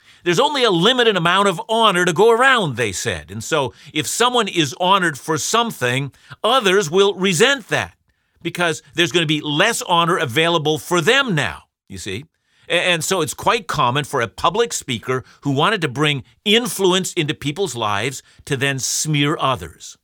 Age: 50-69